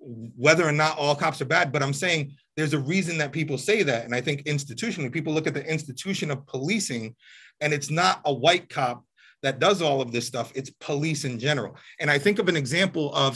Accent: American